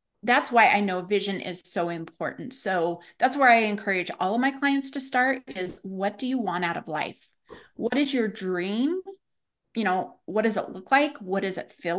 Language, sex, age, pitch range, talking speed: English, female, 30-49, 190-260 Hz, 210 wpm